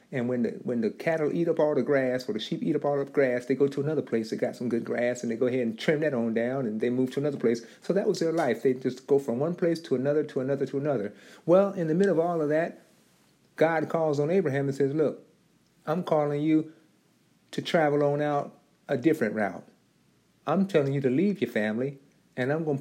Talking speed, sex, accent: 255 wpm, male, American